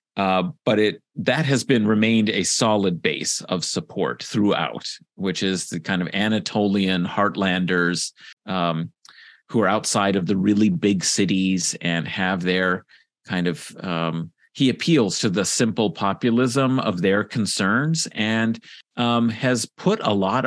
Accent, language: American, English